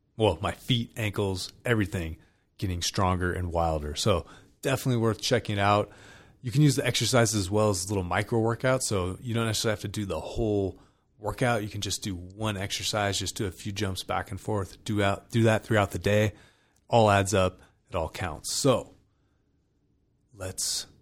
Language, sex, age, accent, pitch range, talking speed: English, male, 30-49, American, 90-110 Hz, 185 wpm